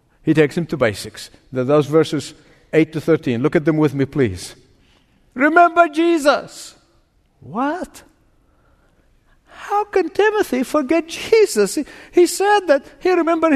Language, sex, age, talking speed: English, male, 60-79, 130 wpm